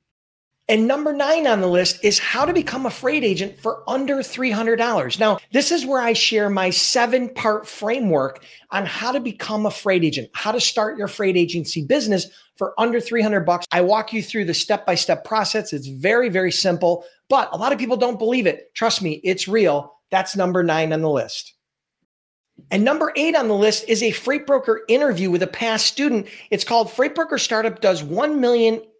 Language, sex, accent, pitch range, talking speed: English, male, American, 175-230 Hz, 190 wpm